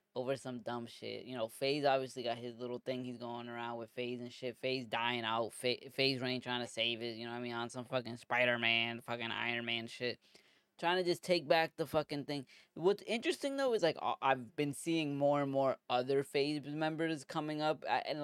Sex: female